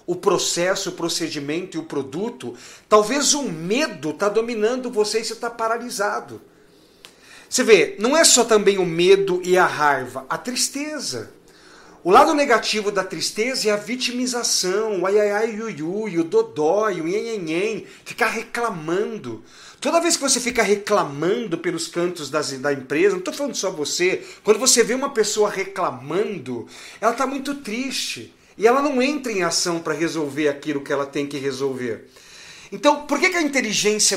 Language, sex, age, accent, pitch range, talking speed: Portuguese, male, 50-69, Brazilian, 155-225 Hz, 170 wpm